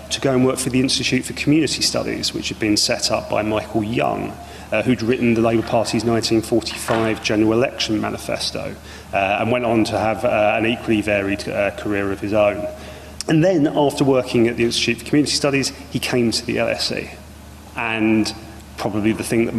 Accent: British